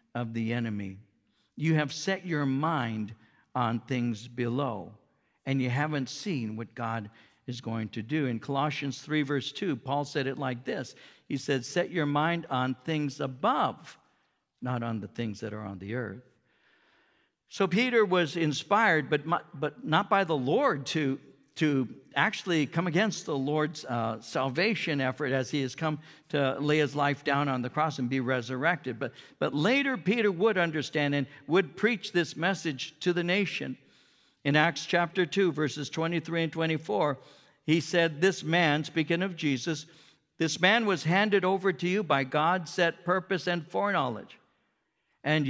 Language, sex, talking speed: English, male, 165 wpm